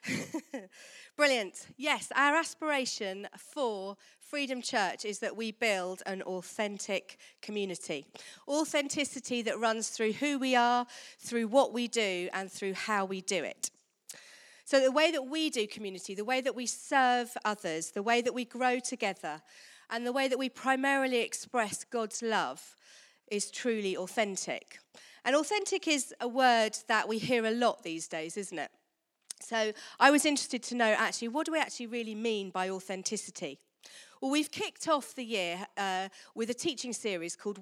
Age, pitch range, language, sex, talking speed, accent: 40-59, 205-270 Hz, English, female, 165 wpm, British